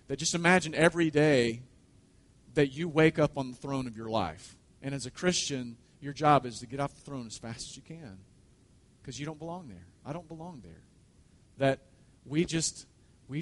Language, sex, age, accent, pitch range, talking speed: English, male, 40-59, American, 125-170 Hz, 200 wpm